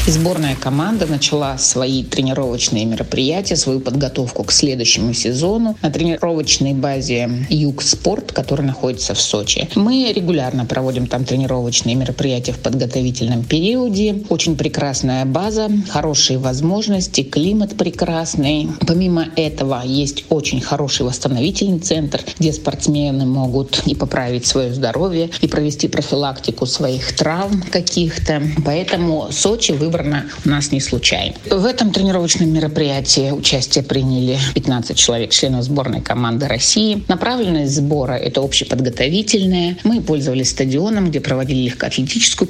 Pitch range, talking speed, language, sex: 130-170 Hz, 120 wpm, Russian, female